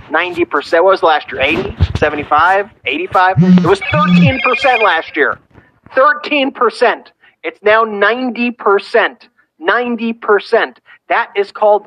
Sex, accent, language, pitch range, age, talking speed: male, American, English, 175-230 Hz, 40-59, 100 wpm